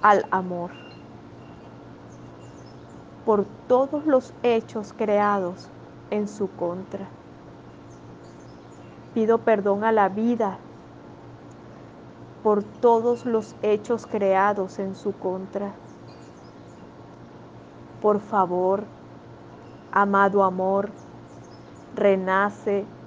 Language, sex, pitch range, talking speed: Spanish, female, 190-215 Hz, 75 wpm